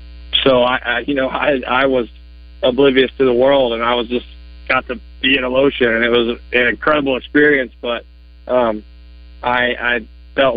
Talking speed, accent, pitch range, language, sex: 185 wpm, American, 85-130 Hz, English, male